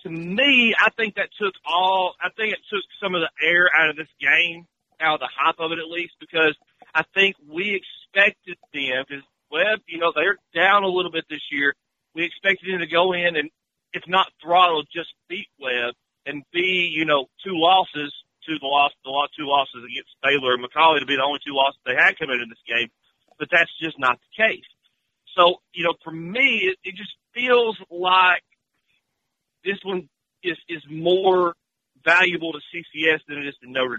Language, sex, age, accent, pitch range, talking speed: English, male, 40-59, American, 145-185 Hz, 195 wpm